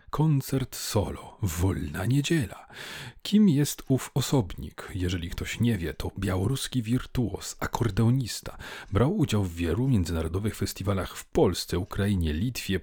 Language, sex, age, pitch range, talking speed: Polish, male, 40-59, 90-120 Hz, 120 wpm